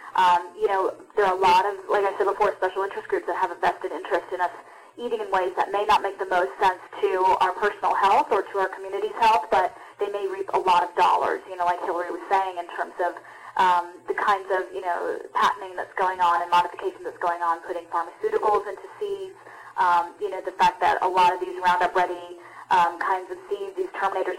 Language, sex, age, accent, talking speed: English, female, 10-29, American, 235 wpm